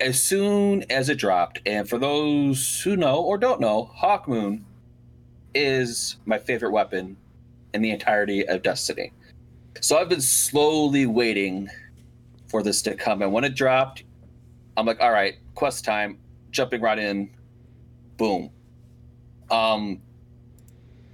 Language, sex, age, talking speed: English, male, 30-49, 135 wpm